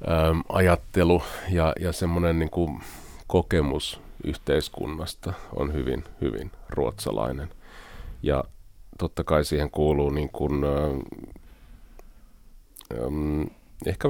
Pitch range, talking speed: 75-85 Hz, 80 wpm